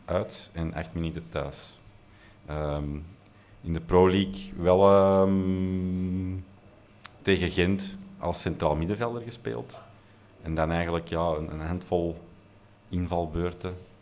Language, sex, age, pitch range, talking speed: Dutch, male, 40-59, 85-100 Hz, 110 wpm